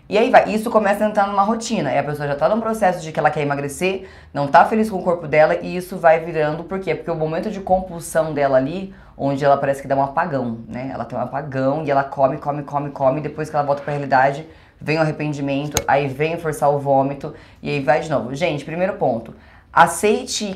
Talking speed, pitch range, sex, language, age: 240 wpm, 140-185 Hz, female, Portuguese, 20-39